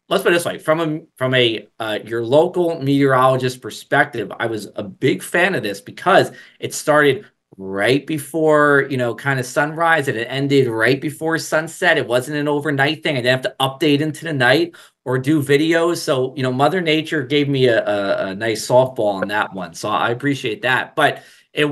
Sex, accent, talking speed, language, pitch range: male, American, 205 wpm, English, 130-160 Hz